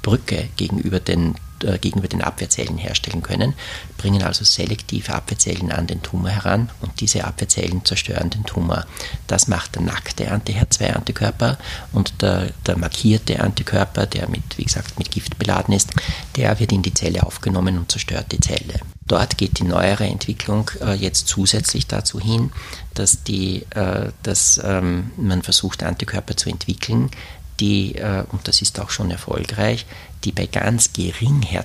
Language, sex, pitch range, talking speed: German, male, 90-110 Hz, 160 wpm